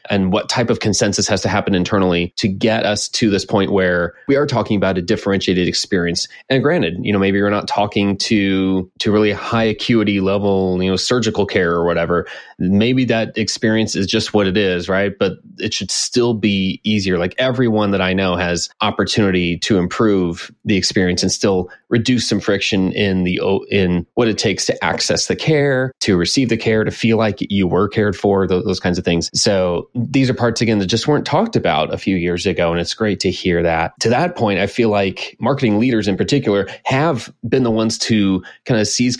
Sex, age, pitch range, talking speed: male, 30-49, 95-115 Hz, 210 wpm